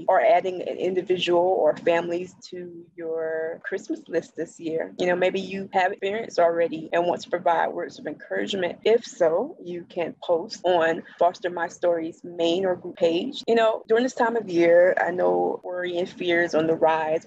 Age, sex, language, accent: 20-39, female, English, American